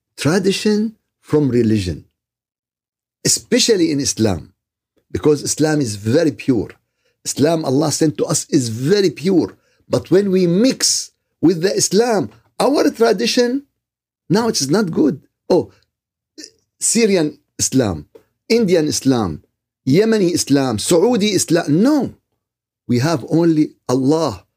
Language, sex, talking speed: Arabic, male, 115 wpm